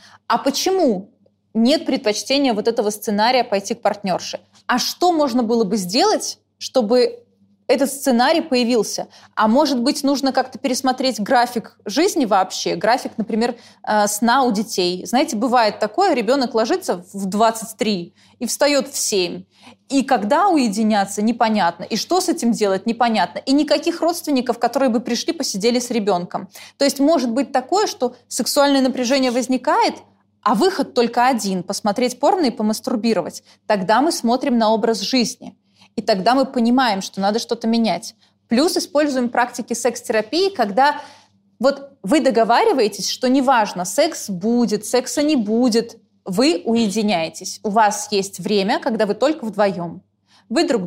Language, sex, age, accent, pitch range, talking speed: Russian, female, 20-39, native, 210-265 Hz, 145 wpm